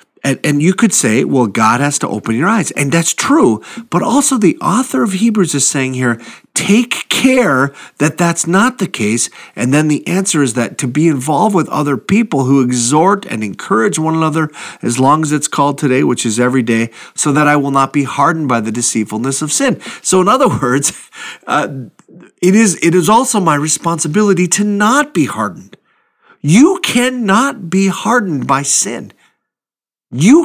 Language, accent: English, American